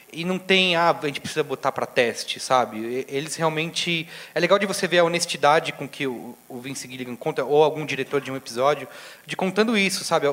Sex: male